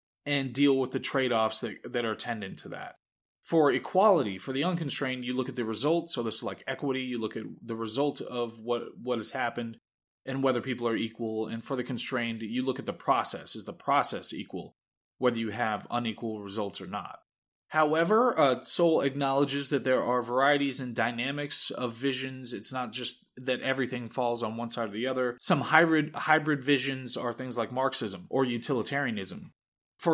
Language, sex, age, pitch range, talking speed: English, male, 20-39, 115-140 Hz, 190 wpm